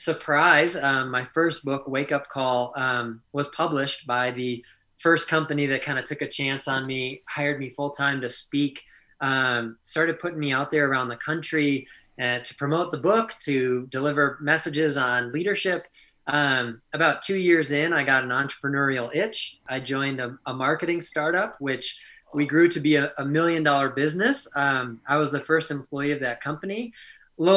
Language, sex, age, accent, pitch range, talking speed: English, male, 20-39, American, 130-155 Hz, 185 wpm